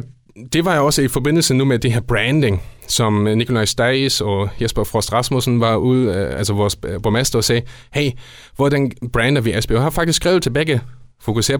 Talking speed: 190 wpm